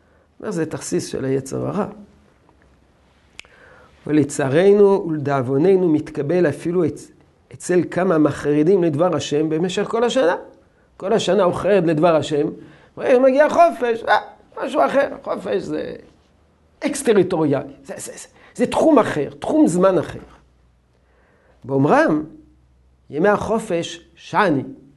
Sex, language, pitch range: male, Hebrew, 145-220 Hz